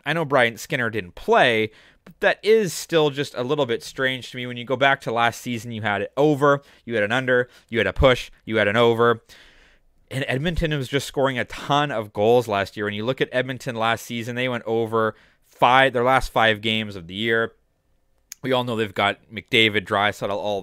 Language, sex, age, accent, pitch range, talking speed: English, male, 20-39, American, 110-140 Hz, 225 wpm